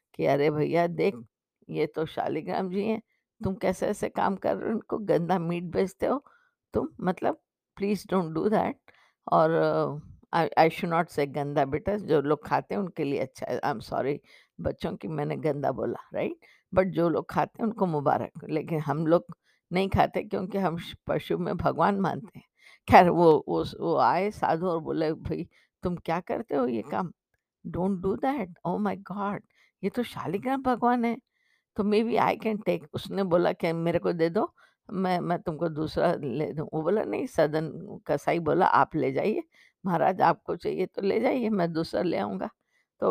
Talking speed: 190 wpm